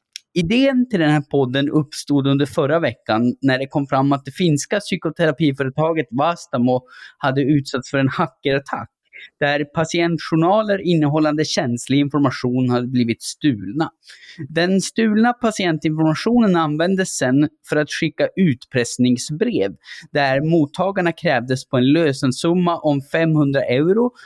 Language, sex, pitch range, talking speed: Swedish, male, 130-170 Hz, 120 wpm